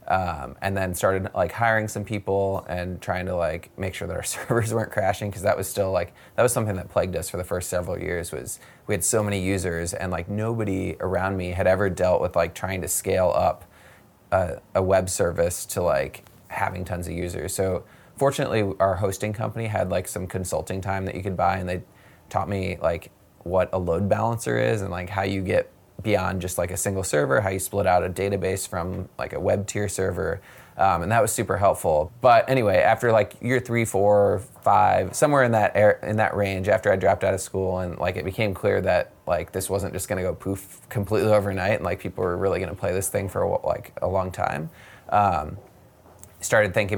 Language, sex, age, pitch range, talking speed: English, male, 20-39, 90-105 Hz, 220 wpm